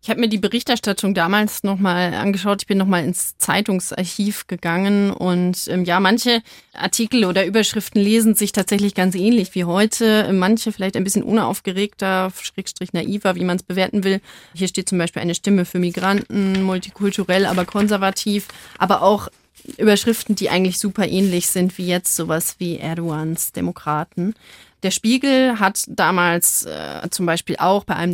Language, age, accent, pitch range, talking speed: German, 30-49, German, 175-200 Hz, 160 wpm